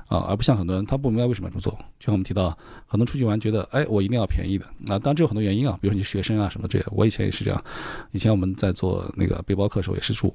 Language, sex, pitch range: Chinese, male, 95-125 Hz